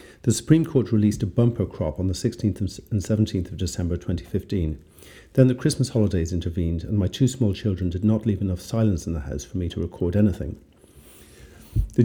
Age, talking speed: 50-69, 195 wpm